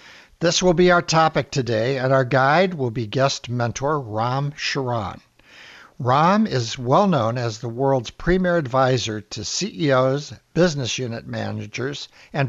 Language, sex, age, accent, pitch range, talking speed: English, male, 60-79, American, 125-170 Hz, 140 wpm